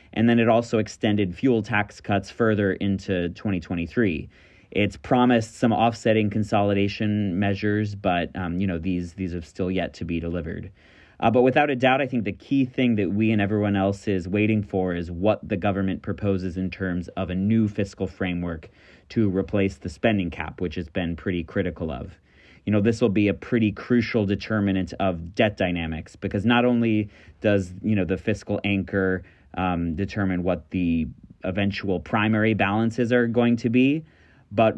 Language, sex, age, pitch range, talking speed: English, male, 30-49, 95-110 Hz, 180 wpm